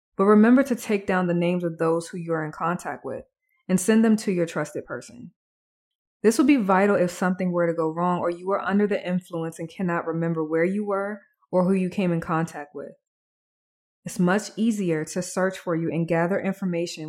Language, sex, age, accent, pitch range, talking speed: English, female, 20-39, American, 170-205 Hz, 215 wpm